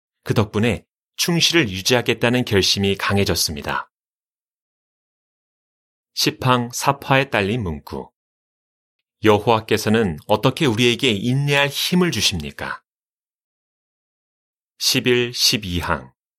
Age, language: 30-49, Korean